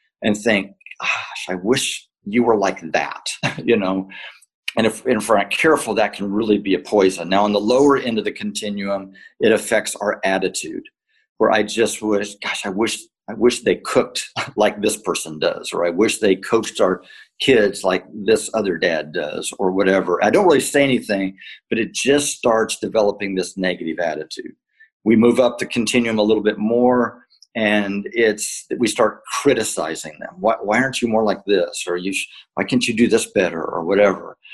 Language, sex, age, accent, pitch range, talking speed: English, male, 50-69, American, 100-130 Hz, 190 wpm